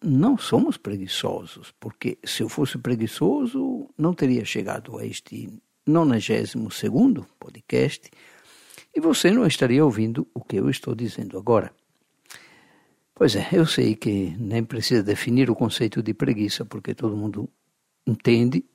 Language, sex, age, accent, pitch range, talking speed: Portuguese, male, 60-79, Brazilian, 110-150 Hz, 135 wpm